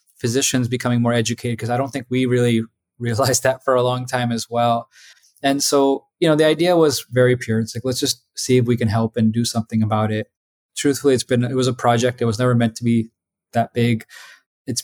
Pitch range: 120-130 Hz